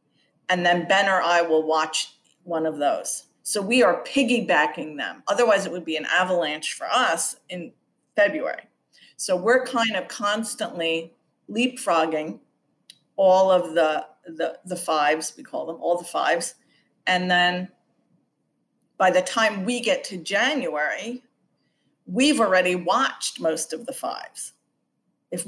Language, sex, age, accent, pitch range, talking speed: English, female, 50-69, American, 165-220 Hz, 140 wpm